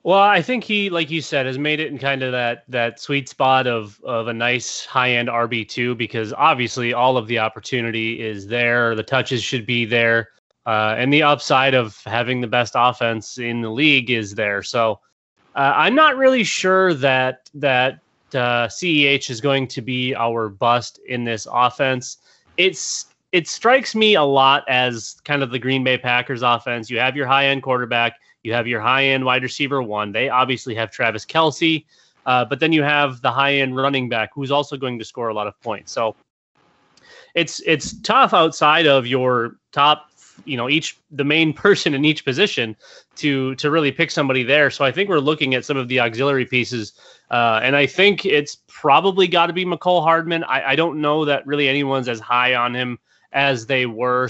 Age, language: 30-49, English